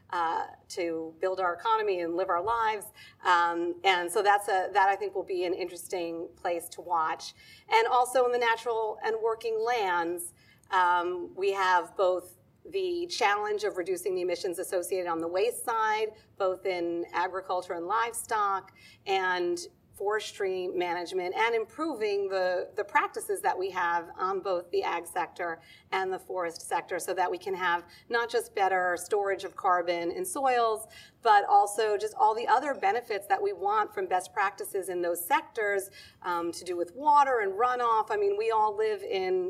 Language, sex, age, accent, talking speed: English, female, 40-59, American, 175 wpm